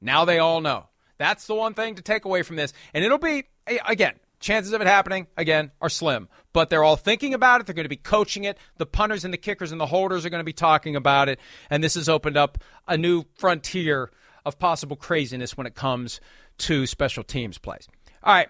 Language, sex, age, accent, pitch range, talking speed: English, male, 40-59, American, 135-180 Hz, 230 wpm